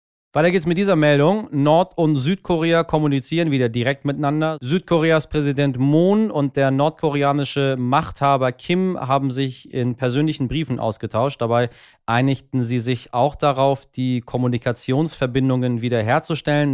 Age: 30-49